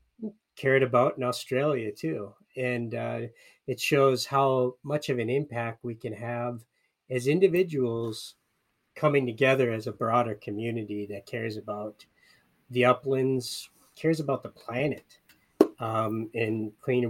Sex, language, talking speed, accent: male, English, 130 wpm, American